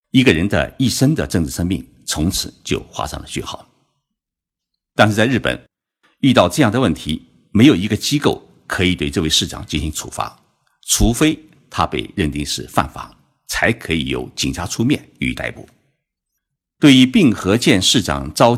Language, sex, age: Chinese, male, 50-69